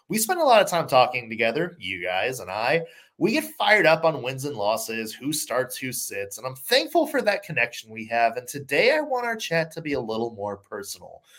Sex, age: male, 20-39